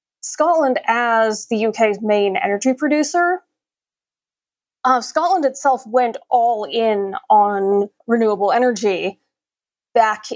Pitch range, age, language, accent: 210-255 Hz, 20-39, English, American